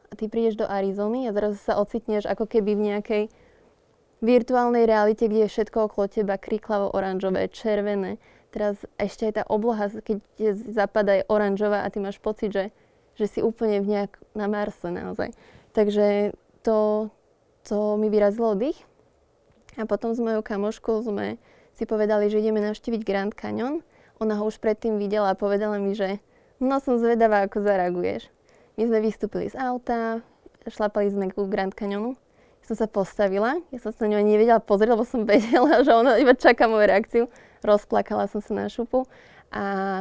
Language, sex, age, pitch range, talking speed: Slovak, female, 20-39, 205-225 Hz, 165 wpm